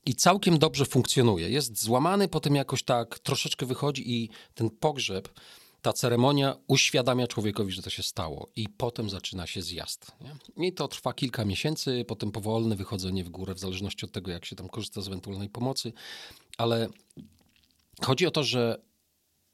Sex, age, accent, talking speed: male, 40-59, native, 165 wpm